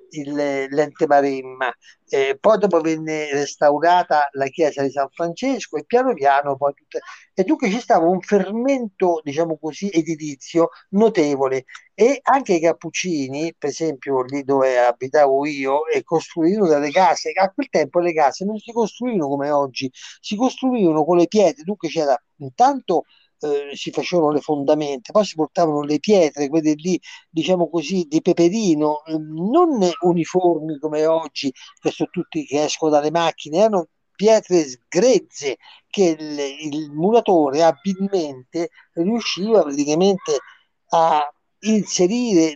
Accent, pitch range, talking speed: native, 150-195 Hz, 135 wpm